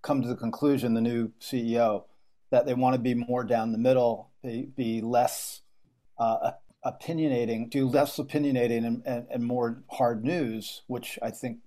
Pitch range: 115-140 Hz